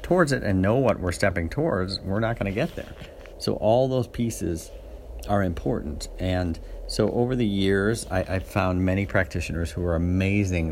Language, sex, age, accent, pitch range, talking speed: English, male, 50-69, American, 85-105 Hz, 185 wpm